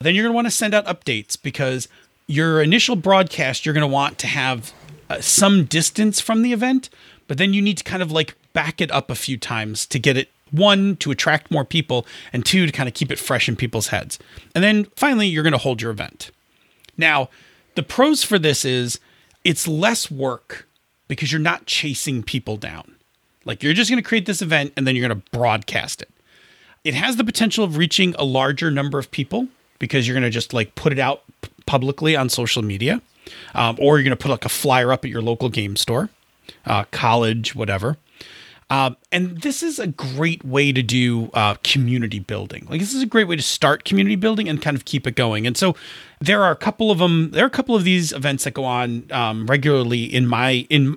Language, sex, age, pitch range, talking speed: English, male, 30-49, 125-175 Hz, 220 wpm